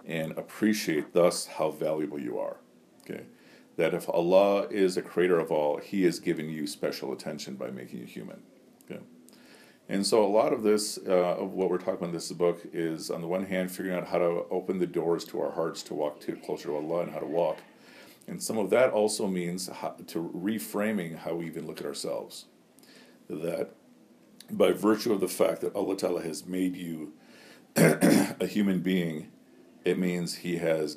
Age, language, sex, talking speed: 50-69, English, male, 195 wpm